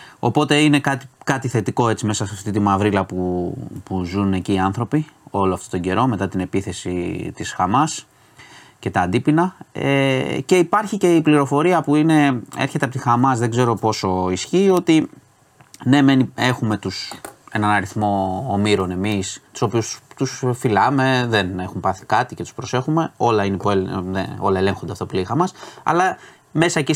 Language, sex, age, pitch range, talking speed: Greek, male, 30-49, 105-155 Hz, 170 wpm